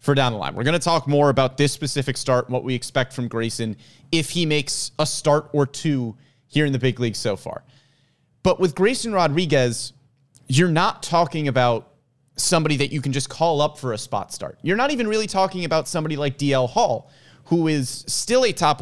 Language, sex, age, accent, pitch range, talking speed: English, male, 30-49, American, 125-165 Hz, 215 wpm